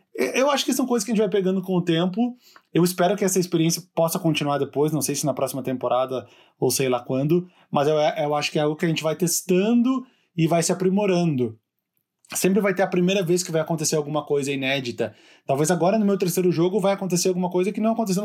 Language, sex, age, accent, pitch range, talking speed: Portuguese, male, 20-39, Brazilian, 145-190 Hz, 235 wpm